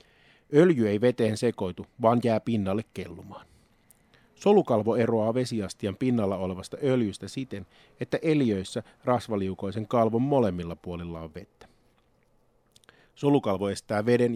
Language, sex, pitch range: Finnish, male, 100-120 Hz